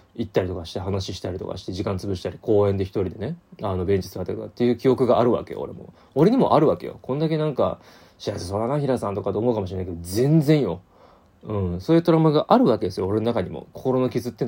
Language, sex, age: Japanese, male, 20-39